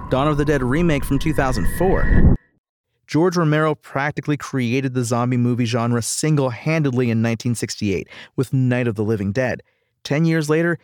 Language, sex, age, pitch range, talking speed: English, male, 40-59, 125-150 Hz, 150 wpm